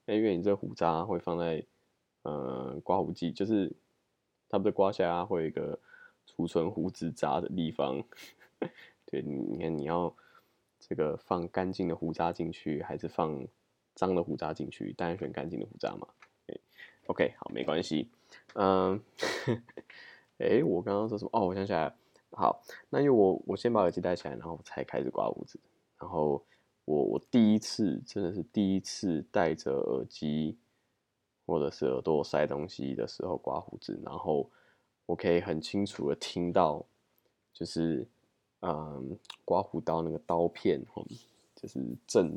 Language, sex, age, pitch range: Chinese, male, 20-39, 80-100 Hz